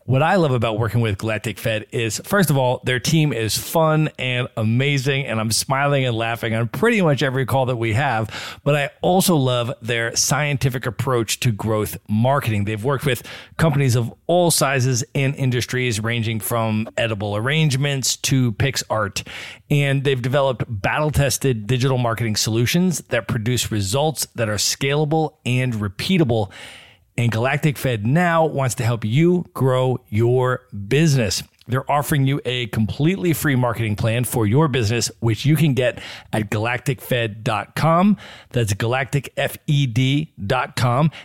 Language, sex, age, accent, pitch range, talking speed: English, male, 40-59, American, 115-145 Hz, 150 wpm